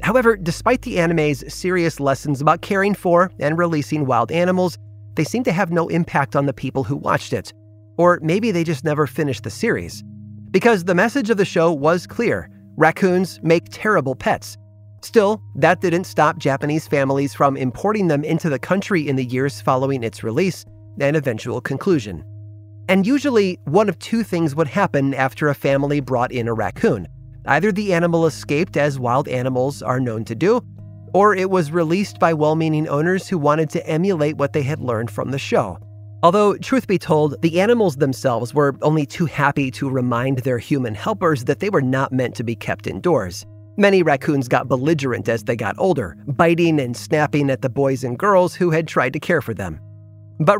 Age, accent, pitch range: 30-49, American, 125-175 Hz